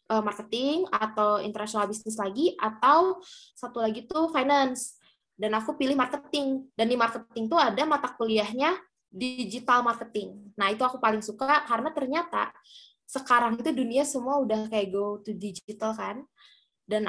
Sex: female